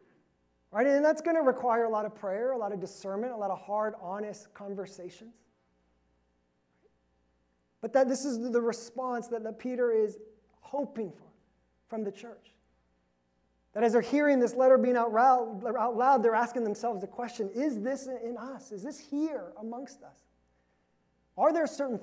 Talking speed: 160 wpm